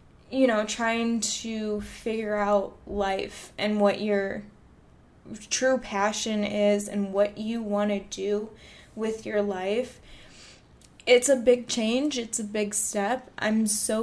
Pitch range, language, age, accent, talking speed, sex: 200-230 Hz, English, 10-29, American, 135 wpm, female